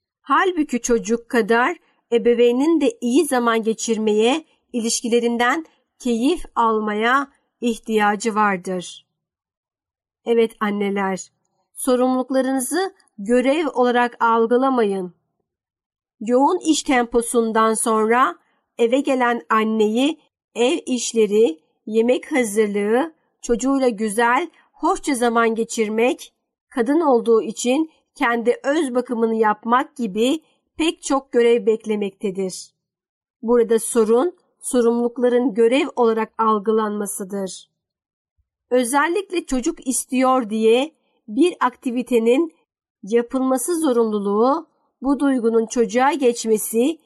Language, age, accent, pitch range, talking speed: Turkish, 50-69, native, 220-265 Hz, 85 wpm